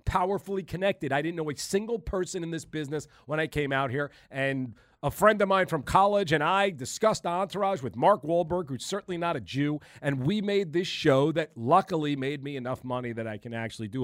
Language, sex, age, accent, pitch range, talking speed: English, male, 40-59, American, 135-185 Hz, 220 wpm